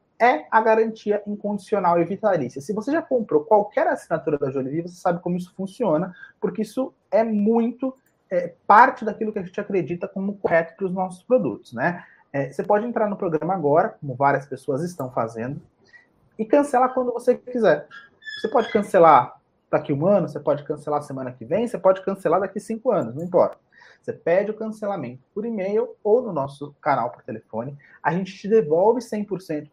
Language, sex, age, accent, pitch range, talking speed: Portuguese, male, 30-49, Brazilian, 150-225 Hz, 190 wpm